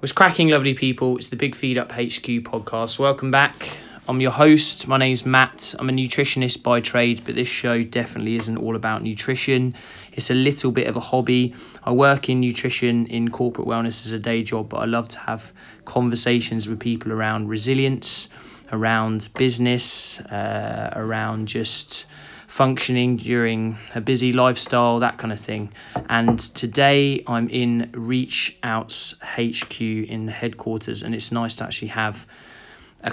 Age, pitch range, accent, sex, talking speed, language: 20-39, 115-125 Hz, British, male, 165 wpm, English